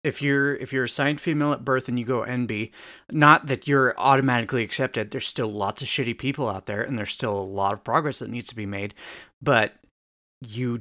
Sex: male